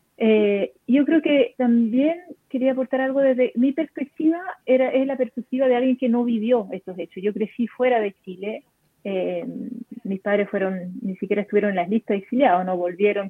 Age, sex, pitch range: 30-49, female, 200-255 Hz